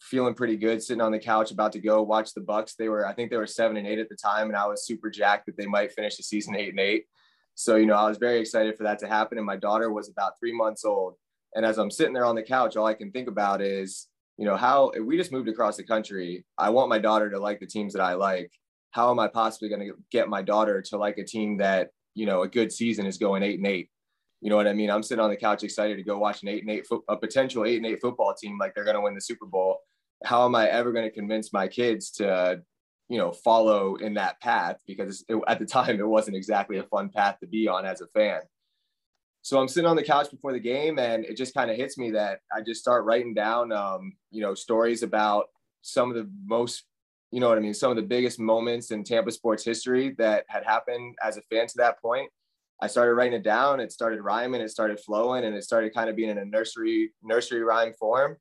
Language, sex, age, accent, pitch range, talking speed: English, male, 20-39, American, 105-120 Hz, 265 wpm